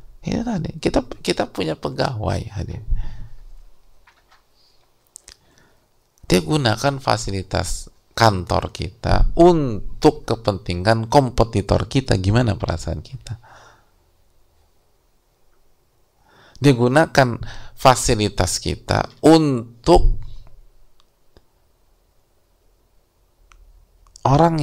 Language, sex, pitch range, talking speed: English, male, 85-120 Hz, 60 wpm